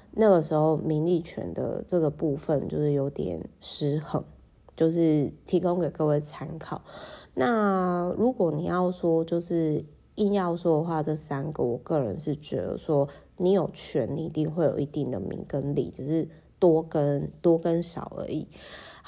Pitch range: 145-180 Hz